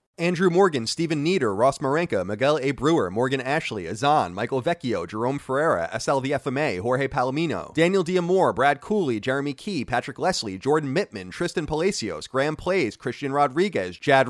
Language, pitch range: English, 140-185 Hz